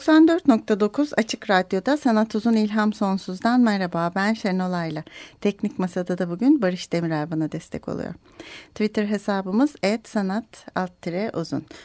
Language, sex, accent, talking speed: Turkish, female, native, 115 wpm